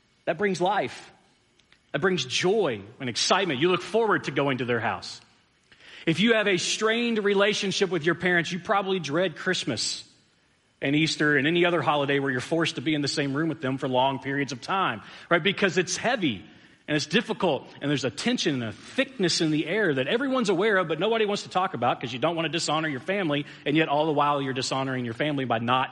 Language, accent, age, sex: English, American, 40-59, male